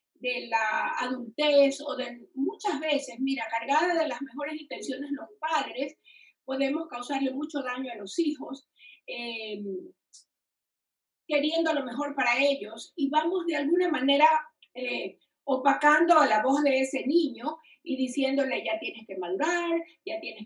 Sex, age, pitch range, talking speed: female, 40-59, 255-310 Hz, 145 wpm